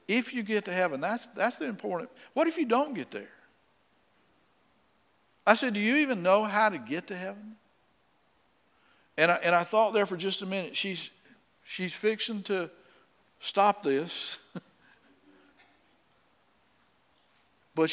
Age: 60-79